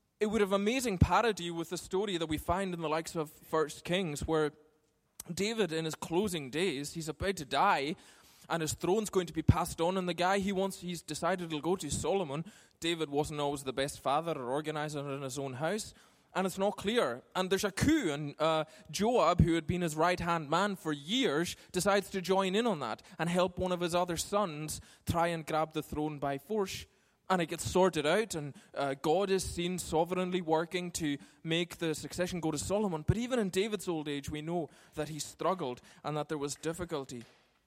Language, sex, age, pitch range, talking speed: English, male, 20-39, 150-185 Hz, 210 wpm